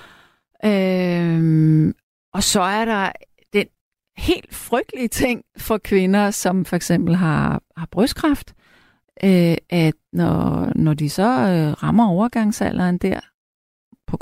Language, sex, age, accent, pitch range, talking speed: Danish, female, 30-49, native, 165-210 Hz, 105 wpm